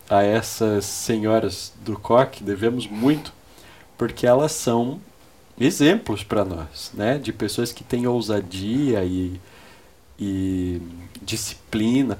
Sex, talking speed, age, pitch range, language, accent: male, 110 wpm, 30-49, 105-130 Hz, Portuguese, Brazilian